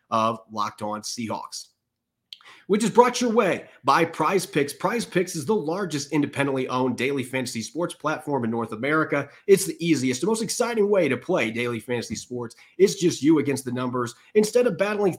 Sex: male